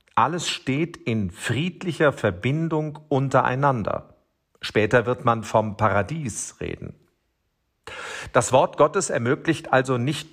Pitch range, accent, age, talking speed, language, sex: 120-155 Hz, German, 40-59, 105 wpm, German, male